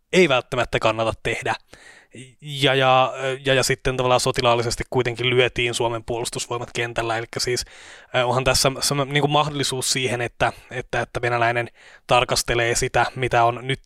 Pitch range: 120-130 Hz